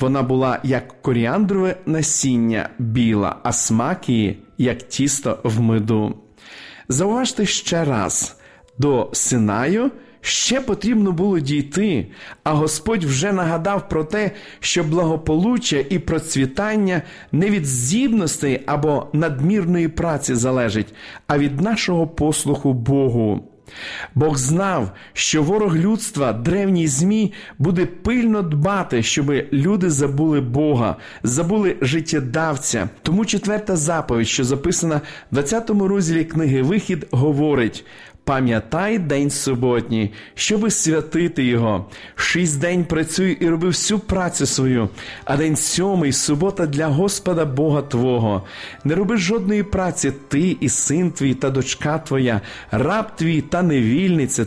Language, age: Ukrainian, 40-59